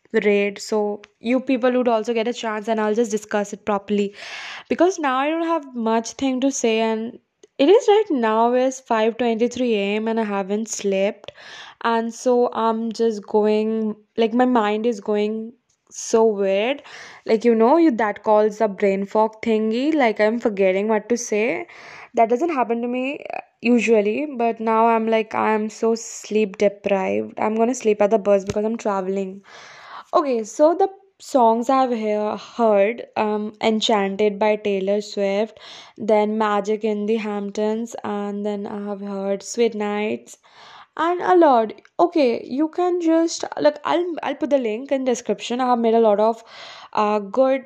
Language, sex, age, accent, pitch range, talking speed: English, female, 20-39, Indian, 210-255 Hz, 165 wpm